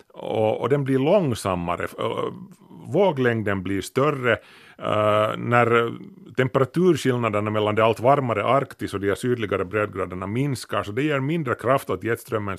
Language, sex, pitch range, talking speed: Swedish, male, 110-140 Hz, 135 wpm